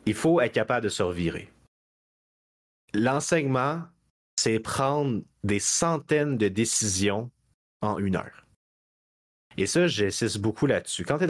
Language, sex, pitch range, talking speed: French, male, 95-125 Hz, 135 wpm